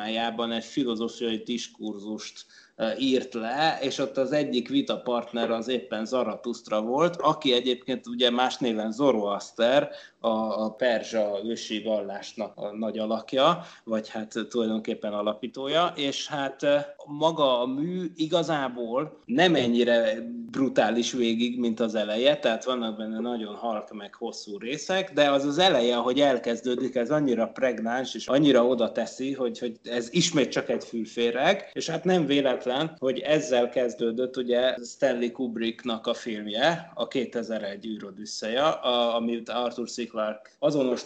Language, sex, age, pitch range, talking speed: Hungarian, male, 20-39, 115-140 Hz, 135 wpm